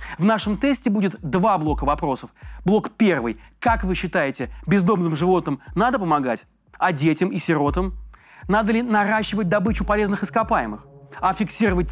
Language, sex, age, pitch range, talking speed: Russian, male, 30-49, 150-205 Hz, 140 wpm